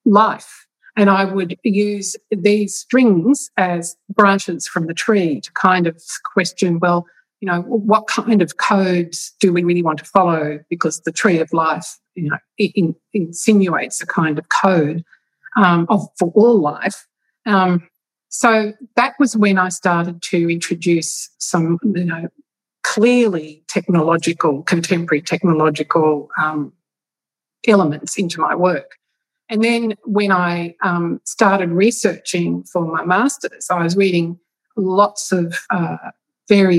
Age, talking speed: 50-69, 140 wpm